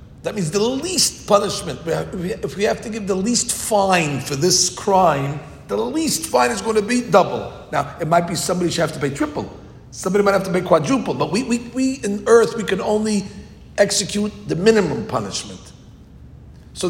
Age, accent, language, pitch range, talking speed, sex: 50-69, American, English, 155-210 Hz, 190 wpm, male